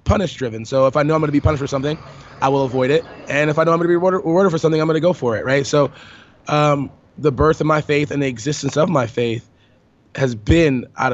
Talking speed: 275 wpm